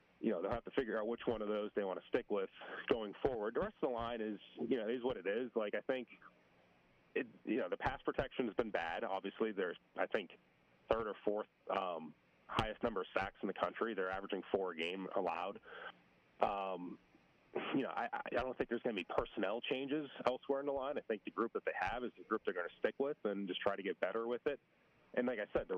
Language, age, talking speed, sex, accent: English, 30-49, 250 wpm, male, American